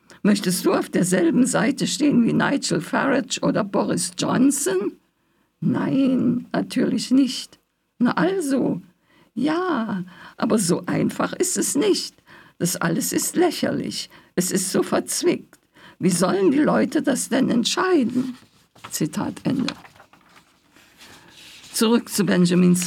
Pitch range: 180-260 Hz